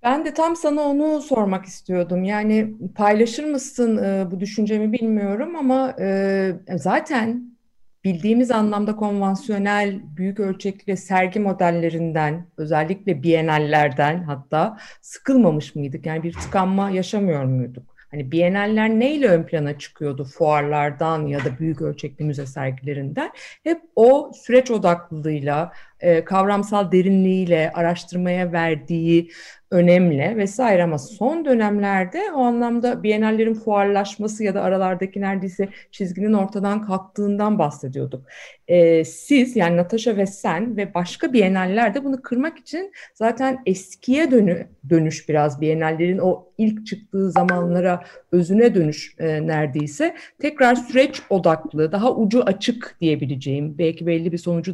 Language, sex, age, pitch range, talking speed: Turkish, female, 50-69, 165-220 Hz, 115 wpm